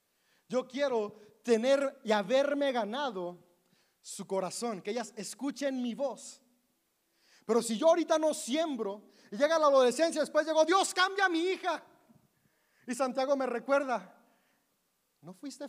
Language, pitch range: Spanish, 245-305 Hz